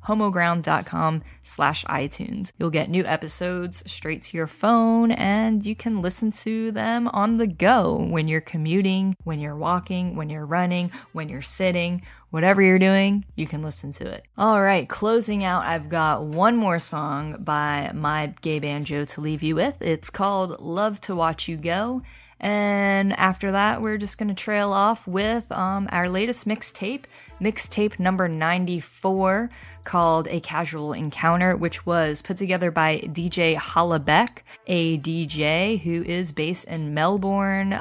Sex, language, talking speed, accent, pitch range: female, English, 155 wpm, American, 160-200 Hz